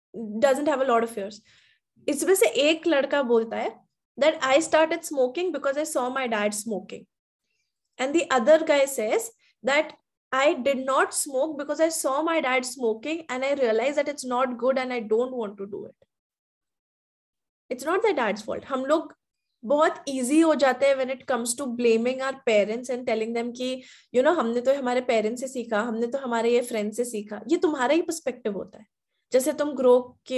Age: 20-39